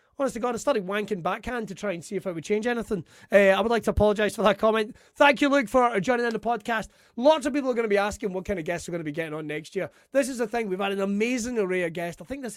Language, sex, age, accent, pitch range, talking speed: English, male, 30-49, British, 165-215 Hz, 315 wpm